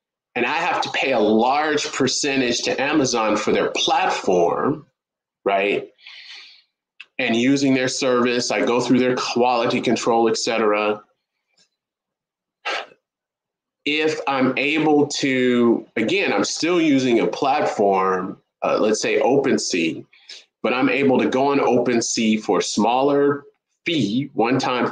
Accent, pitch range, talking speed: American, 115-155 Hz, 125 wpm